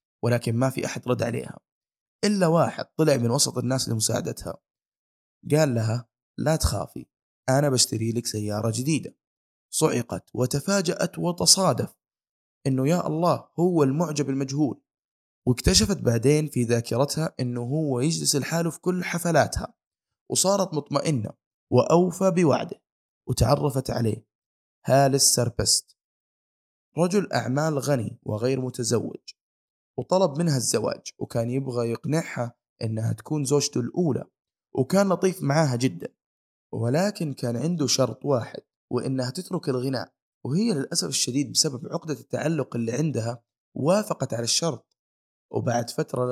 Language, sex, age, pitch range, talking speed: Arabic, male, 20-39, 120-155 Hz, 115 wpm